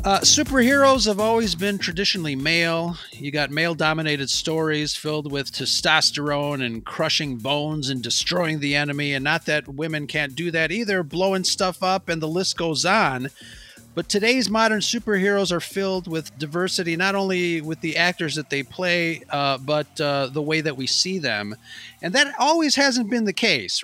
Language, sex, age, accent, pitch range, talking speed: English, male, 30-49, American, 135-175 Hz, 175 wpm